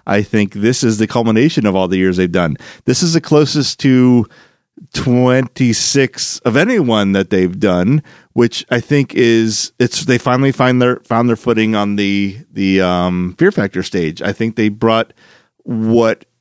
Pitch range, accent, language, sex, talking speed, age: 100-125 Hz, American, English, male, 170 wpm, 30-49